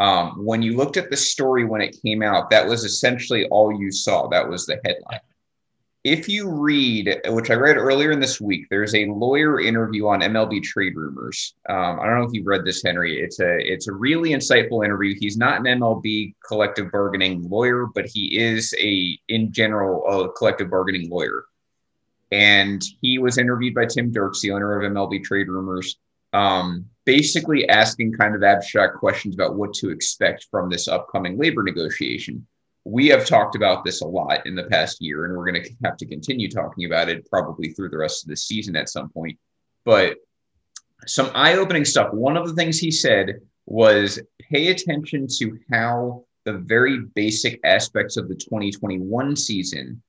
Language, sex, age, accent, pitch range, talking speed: English, male, 30-49, American, 100-125 Hz, 185 wpm